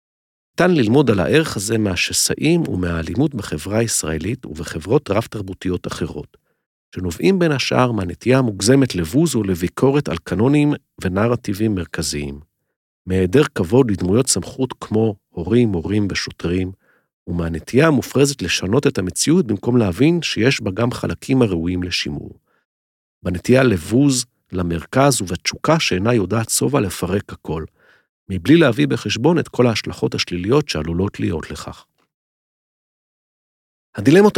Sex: male